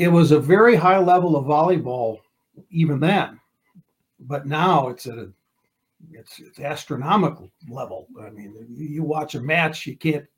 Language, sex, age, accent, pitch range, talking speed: English, male, 60-79, American, 135-170 Hz, 155 wpm